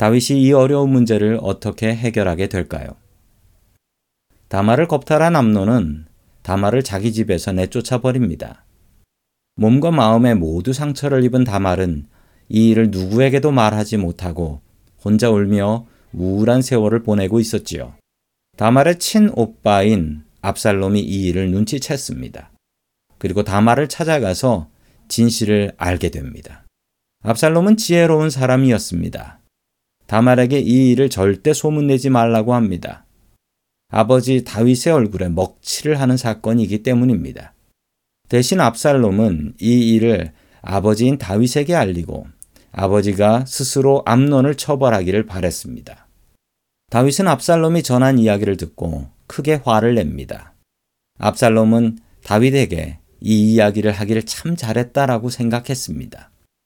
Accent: native